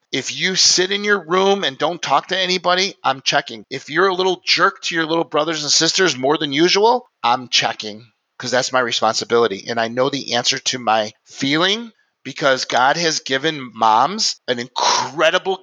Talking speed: 185 wpm